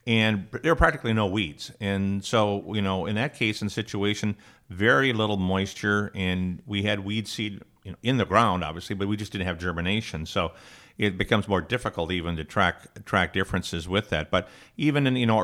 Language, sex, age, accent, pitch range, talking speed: English, male, 50-69, American, 95-110 Hz, 200 wpm